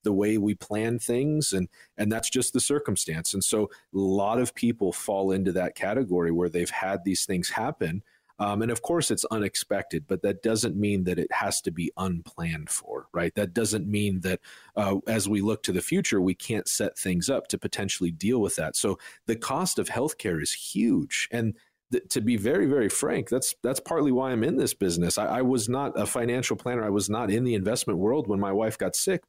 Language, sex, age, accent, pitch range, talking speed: English, male, 40-59, American, 95-120 Hz, 215 wpm